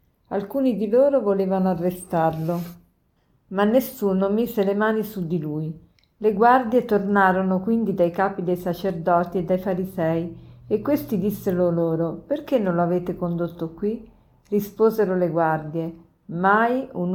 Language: Italian